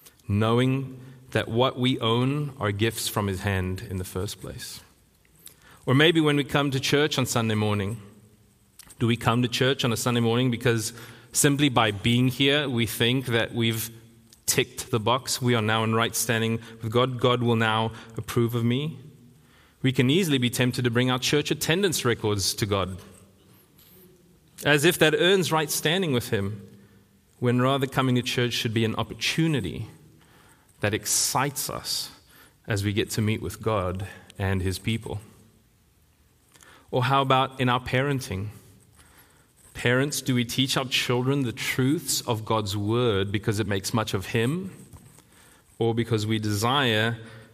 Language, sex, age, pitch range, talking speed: English, male, 30-49, 105-130 Hz, 165 wpm